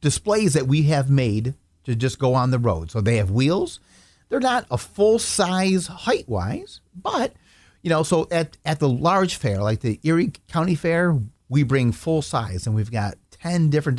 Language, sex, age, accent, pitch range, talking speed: English, male, 40-59, American, 115-155 Hz, 190 wpm